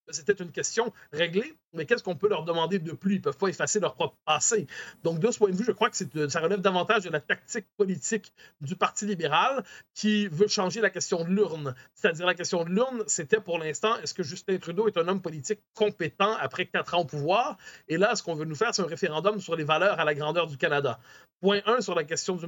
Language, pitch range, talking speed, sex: French, 165-215 Hz, 250 wpm, male